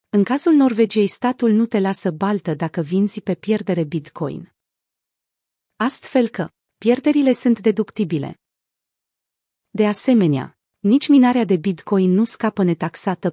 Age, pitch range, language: 30-49, 185-235 Hz, Romanian